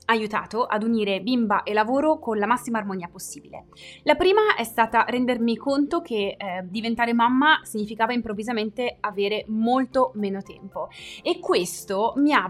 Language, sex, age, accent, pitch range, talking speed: Italian, female, 20-39, native, 215-270 Hz, 150 wpm